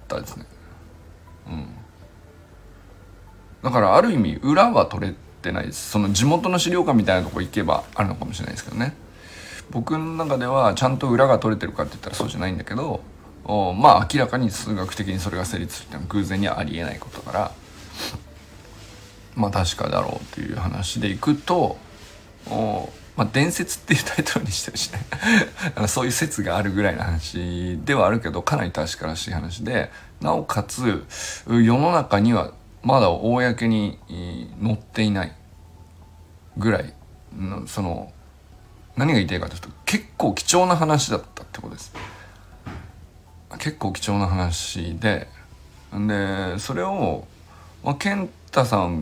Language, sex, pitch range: Japanese, male, 85-110 Hz